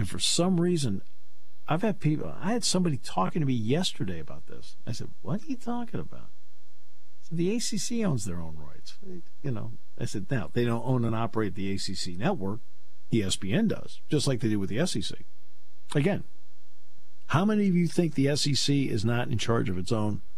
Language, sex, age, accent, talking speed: English, male, 50-69, American, 195 wpm